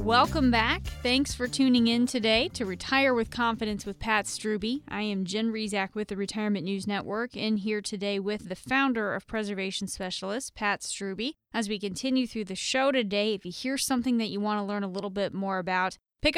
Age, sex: 20-39, female